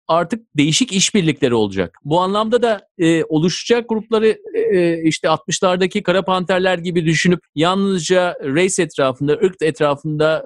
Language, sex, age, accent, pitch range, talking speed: Turkish, male, 50-69, native, 160-225 Hz, 125 wpm